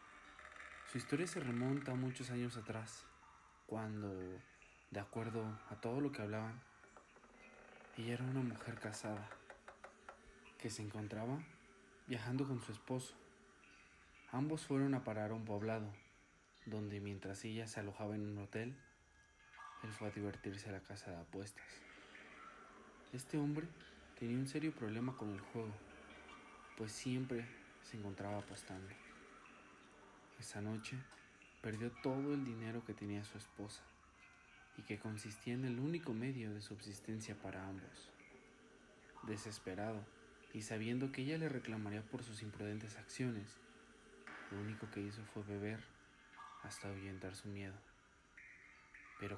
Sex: male